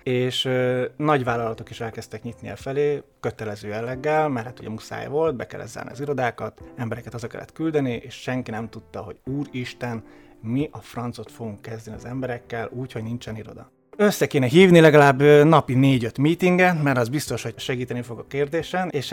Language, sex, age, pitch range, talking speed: Hungarian, male, 20-39, 115-130 Hz, 175 wpm